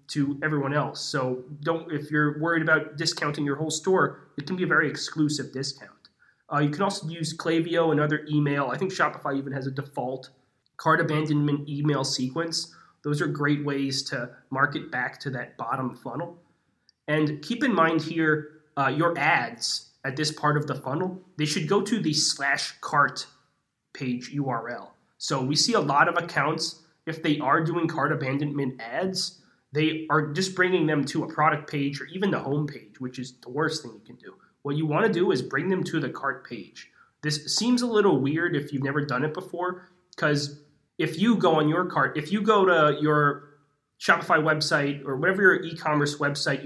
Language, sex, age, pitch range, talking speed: English, male, 20-39, 140-165 Hz, 195 wpm